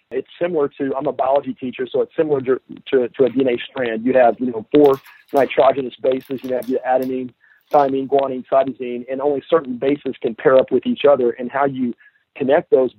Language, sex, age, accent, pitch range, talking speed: English, male, 40-59, American, 125-145 Hz, 210 wpm